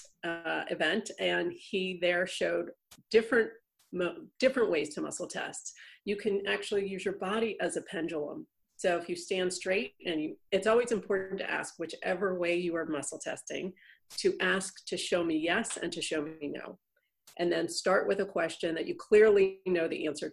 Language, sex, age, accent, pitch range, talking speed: English, female, 40-59, American, 160-195 Hz, 185 wpm